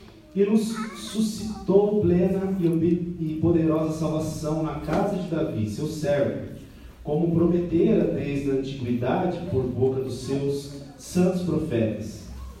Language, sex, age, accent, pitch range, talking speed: Portuguese, male, 40-59, Brazilian, 130-175 Hz, 115 wpm